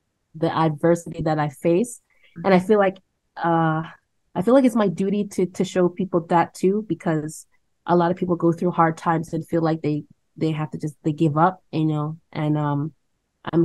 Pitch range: 150-180 Hz